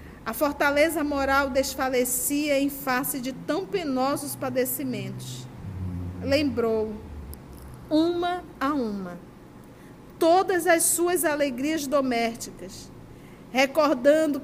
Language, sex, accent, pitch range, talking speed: Portuguese, female, Brazilian, 230-285 Hz, 85 wpm